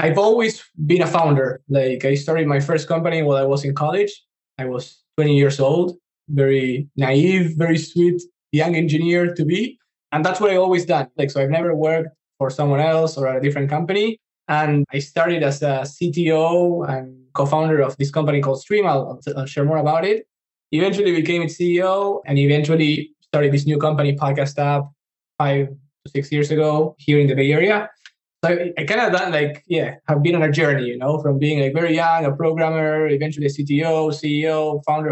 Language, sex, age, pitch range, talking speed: English, male, 20-39, 140-165 Hz, 195 wpm